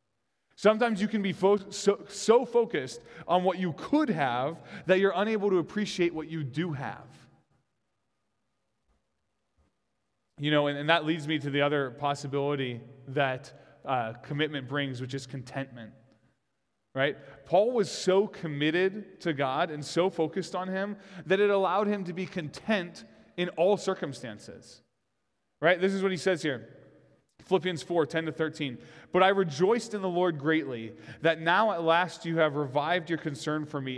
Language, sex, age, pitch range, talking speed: English, male, 20-39, 140-185 Hz, 160 wpm